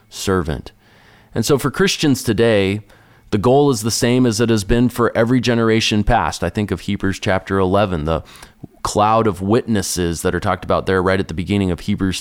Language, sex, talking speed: English, male, 195 wpm